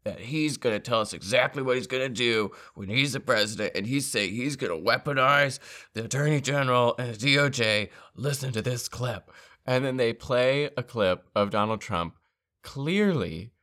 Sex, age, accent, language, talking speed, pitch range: male, 20-39, American, English, 190 wpm, 120-150 Hz